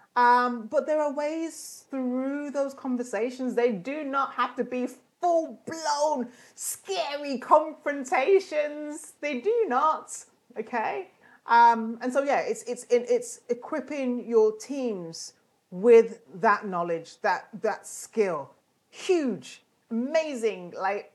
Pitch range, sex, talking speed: 220-305 Hz, female, 115 wpm